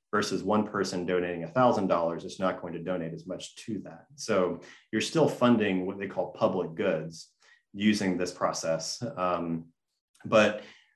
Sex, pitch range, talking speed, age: male, 90-105 Hz, 165 wpm, 30-49